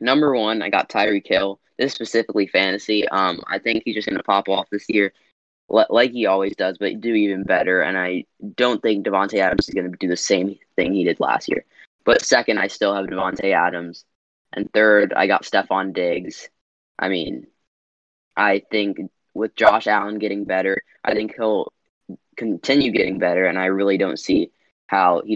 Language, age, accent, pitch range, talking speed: English, 10-29, American, 95-105 Hz, 195 wpm